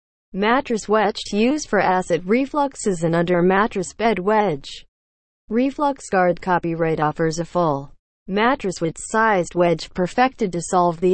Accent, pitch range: American, 160-220 Hz